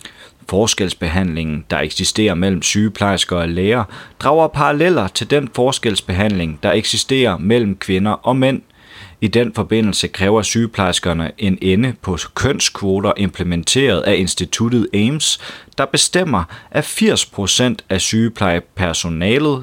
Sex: male